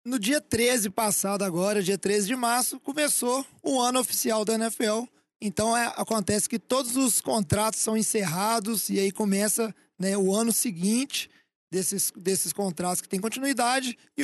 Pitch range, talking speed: 205-255 Hz, 160 wpm